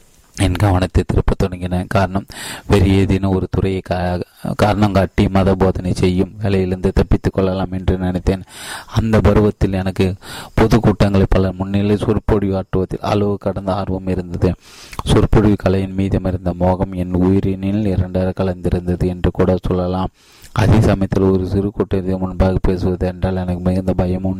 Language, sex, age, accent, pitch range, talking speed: Tamil, male, 30-49, native, 90-100 Hz, 120 wpm